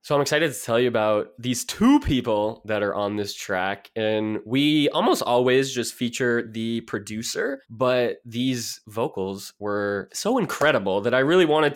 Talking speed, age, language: 170 wpm, 20-39, English